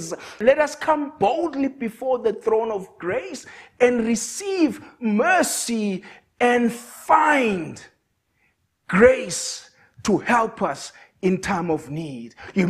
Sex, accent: male, South African